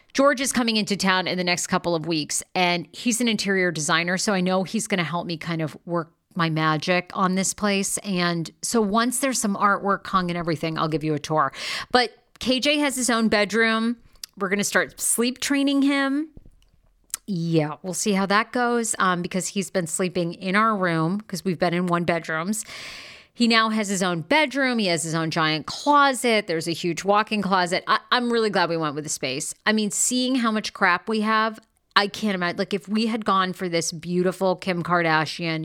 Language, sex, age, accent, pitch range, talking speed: English, female, 40-59, American, 175-225 Hz, 210 wpm